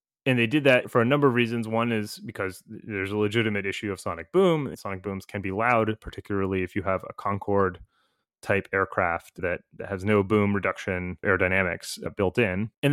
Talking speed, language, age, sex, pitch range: 185 wpm, English, 30-49, male, 100-120 Hz